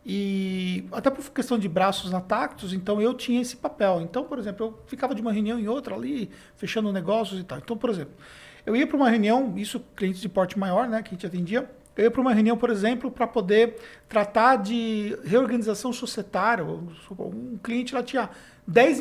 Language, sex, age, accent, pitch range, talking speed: Portuguese, male, 50-69, Brazilian, 195-250 Hz, 200 wpm